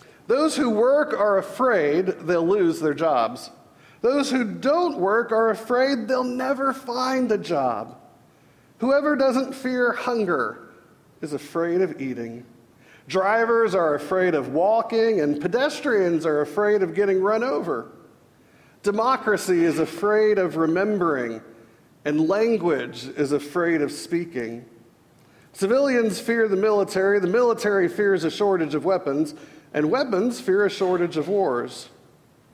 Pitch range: 160-255 Hz